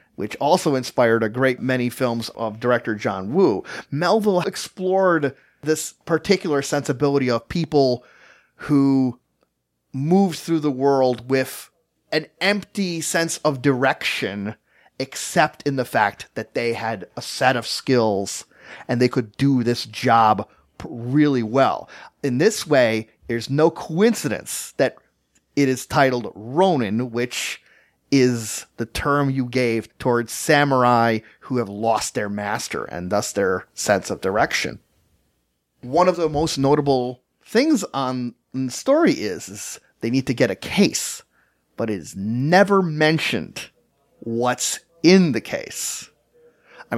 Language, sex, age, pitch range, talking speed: English, male, 30-49, 120-165 Hz, 135 wpm